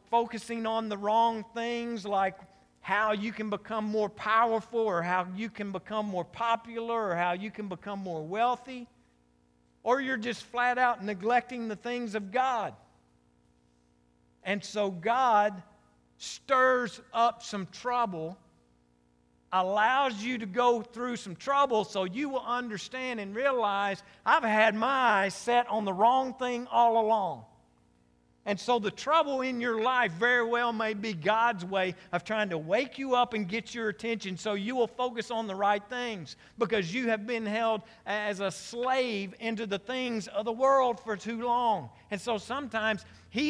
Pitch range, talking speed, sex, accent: 195-240 Hz, 165 wpm, male, American